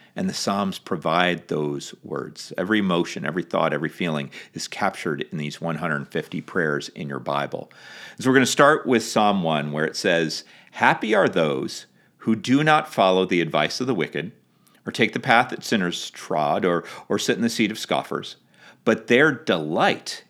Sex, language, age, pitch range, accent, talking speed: male, English, 40-59, 80-115 Hz, American, 185 wpm